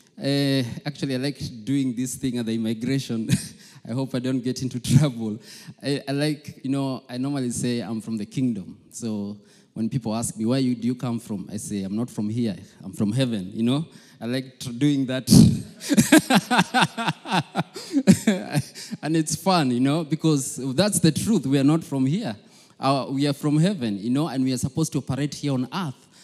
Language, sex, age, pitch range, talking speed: English, male, 20-39, 120-160 Hz, 190 wpm